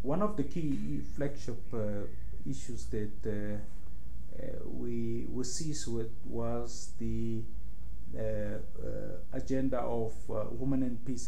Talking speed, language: 120 wpm, English